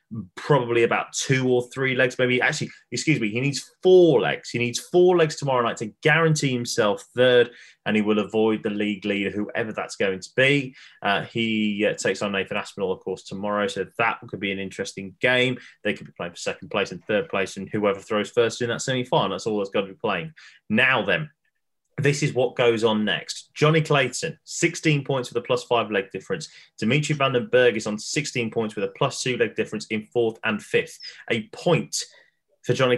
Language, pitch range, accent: English, 110-140 Hz, British